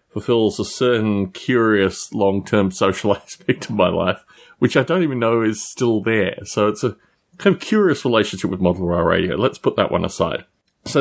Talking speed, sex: 190 wpm, male